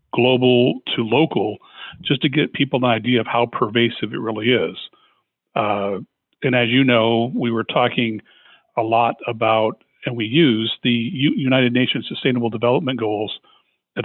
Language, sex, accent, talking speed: English, male, American, 155 wpm